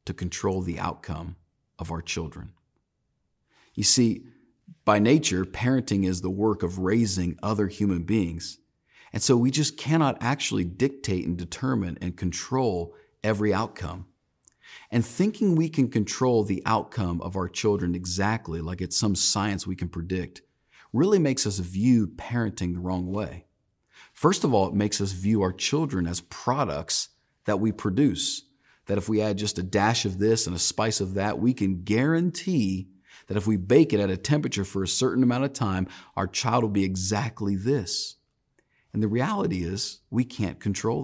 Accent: American